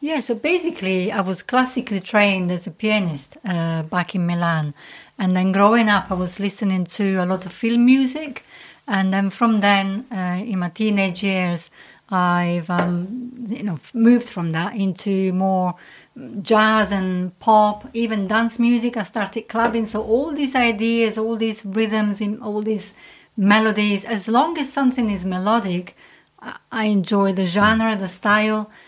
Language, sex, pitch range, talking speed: English, female, 185-225 Hz, 160 wpm